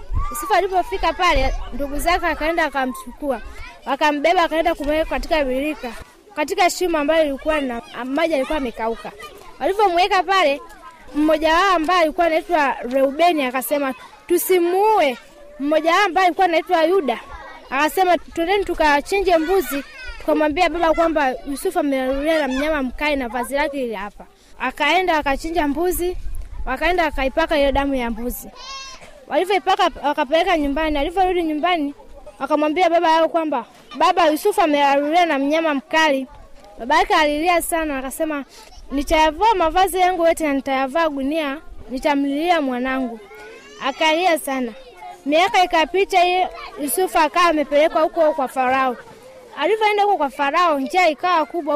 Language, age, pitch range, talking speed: Swahili, 20-39, 280-350 Hz, 120 wpm